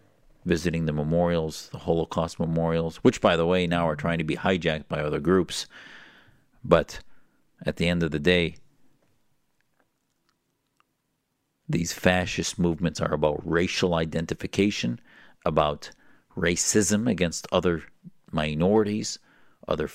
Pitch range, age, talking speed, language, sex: 85-110 Hz, 50-69, 115 wpm, English, male